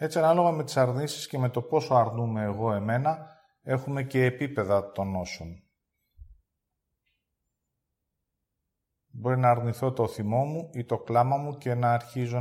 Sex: male